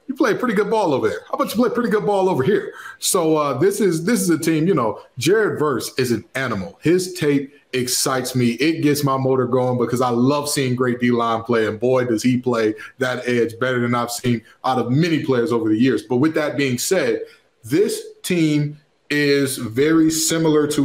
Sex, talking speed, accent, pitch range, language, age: male, 225 wpm, American, 130-180 Hz, English, 20-39